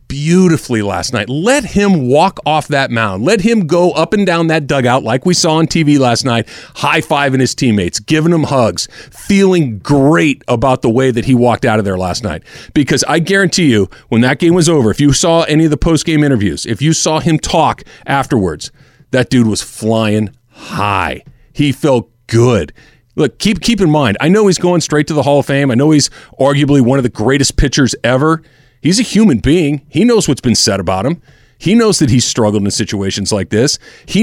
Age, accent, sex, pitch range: 40-59, American, male, 120-160 Hz